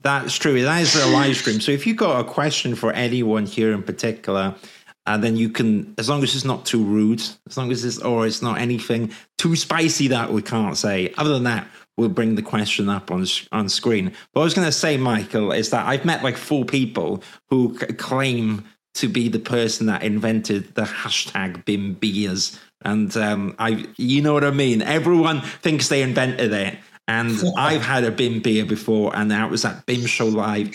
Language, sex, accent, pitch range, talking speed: English, male, British, 110-140 Hz, 215 wpm